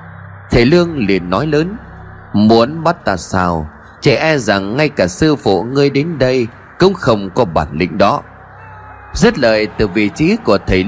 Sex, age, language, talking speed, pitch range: male, 20-39, Vietnamese, 175 wpm, 95-155 Hz